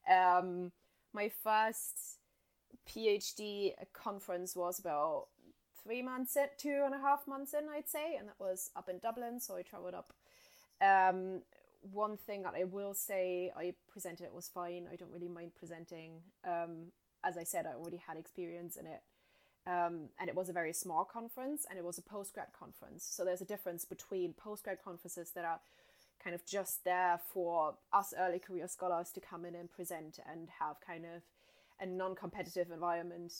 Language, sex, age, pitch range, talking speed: English, female, 20-39, 175-210 Hz, 180 wpm